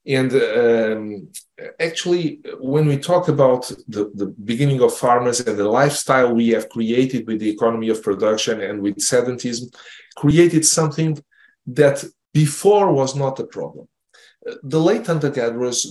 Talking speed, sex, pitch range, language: 140 wpm, male, 120-160 Hz, English